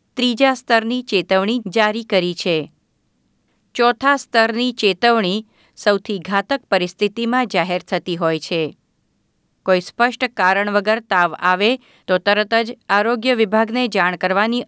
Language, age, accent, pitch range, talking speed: Gujarati, 50-69, native, 185-235 Hz, 120 wpm